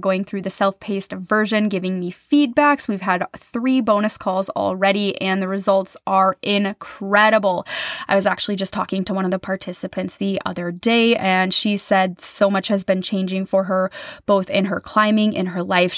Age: 10-29